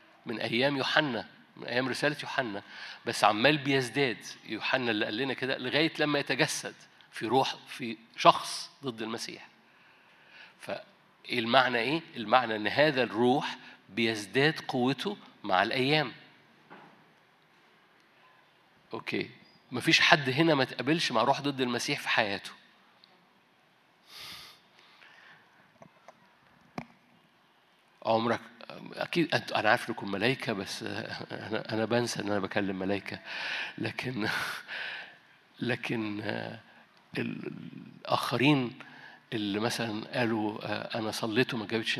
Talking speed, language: 100 wpm, Arabic